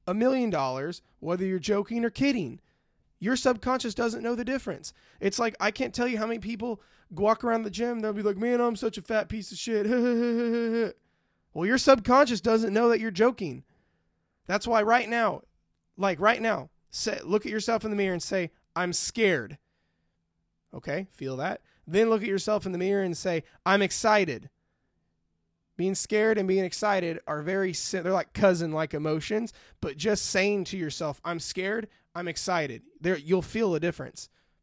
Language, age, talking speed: English, 20-39, 180 wpm